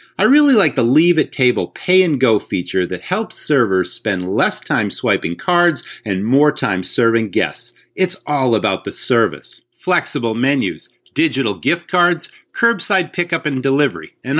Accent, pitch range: American, 125-195 Hz